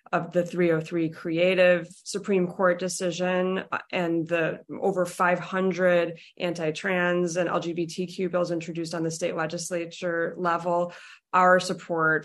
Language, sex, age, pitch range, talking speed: English, female, 20-39, 160-180 Hz, 115 wpm